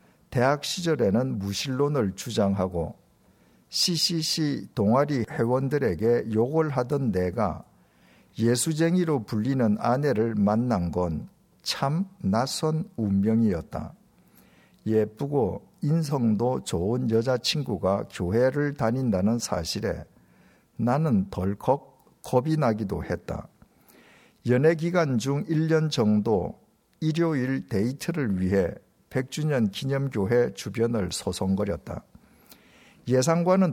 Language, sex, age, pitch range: Korean, male, 50-69, 110-160 Hz